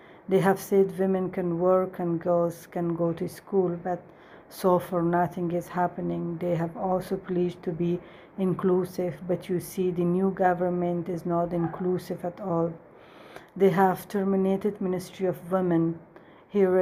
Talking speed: 155 wpm